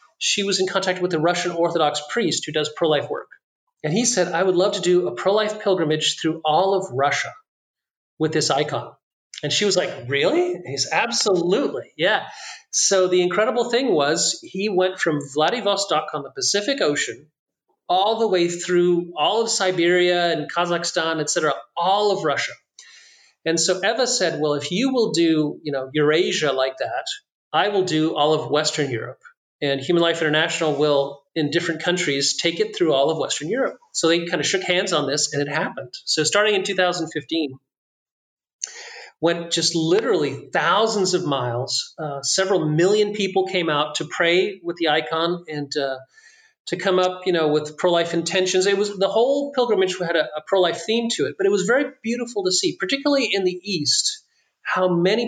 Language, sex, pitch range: English, male, 155-200 Hz